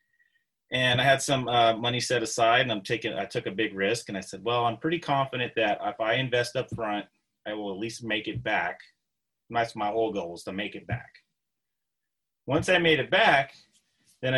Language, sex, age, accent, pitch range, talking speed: English, male, 30-49, American, 110-130 Hz, 215 wpm